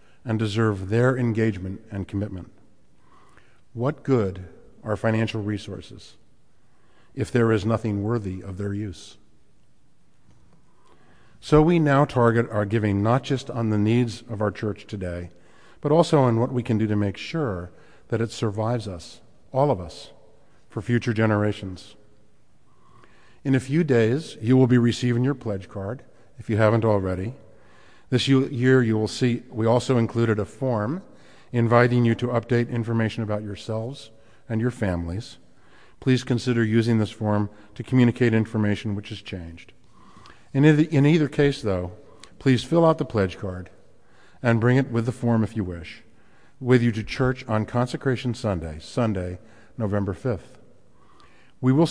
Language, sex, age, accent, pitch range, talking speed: English, male, 50-69, American, 105-125 Hz, 155 wpm